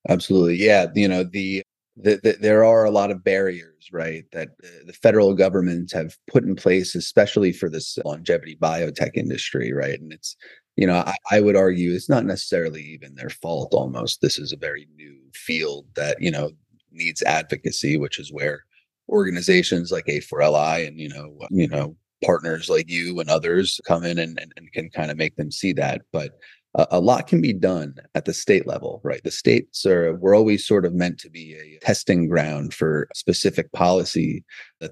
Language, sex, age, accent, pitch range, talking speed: English, male, 30-49, American, 80-95 Hz, 190 wpm